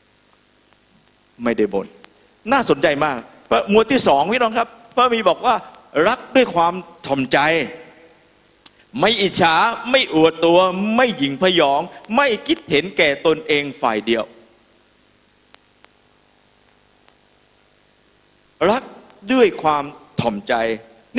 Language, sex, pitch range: Thai, male, 140-230 Hz